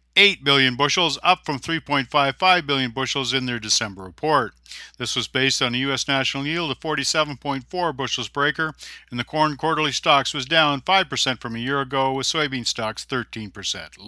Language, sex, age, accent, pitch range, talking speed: English, male, 50-69, American, 130-160 Hz, 175 wpm